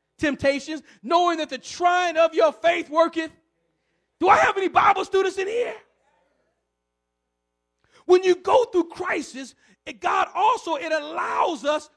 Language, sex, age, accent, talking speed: English, male, 40-59, American, 140 wpm